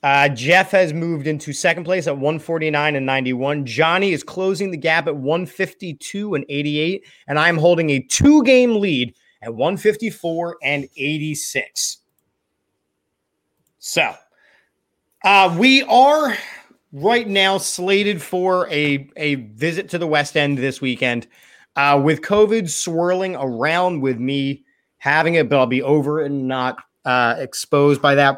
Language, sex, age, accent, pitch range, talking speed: English, male, 30-49, American, 135-185 Hz, 140 wpm